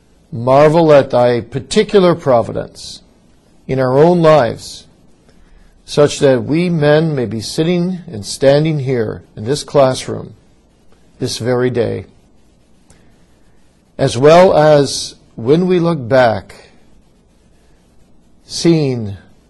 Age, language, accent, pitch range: 50-69, English, American, 110-155 Hz